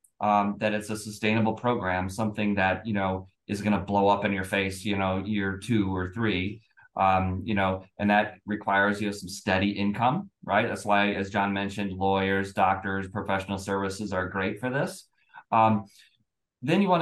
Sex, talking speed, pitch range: male, 185 wpm, 95-110 Hz